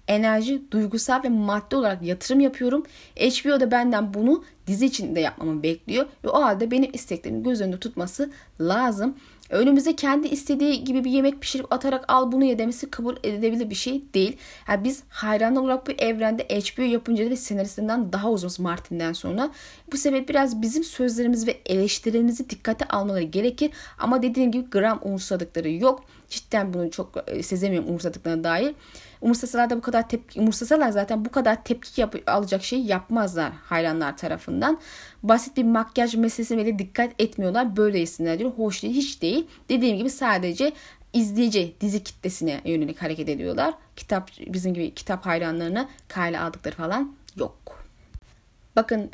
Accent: native